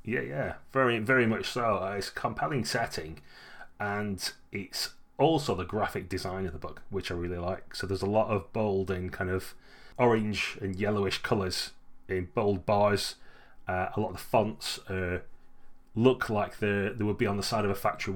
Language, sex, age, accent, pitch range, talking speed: English, male, 30-49, British, 95-110 Hz, 190 wpm